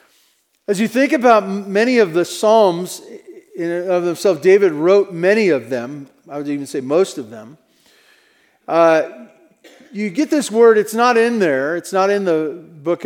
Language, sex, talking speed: English, male, 165 wpm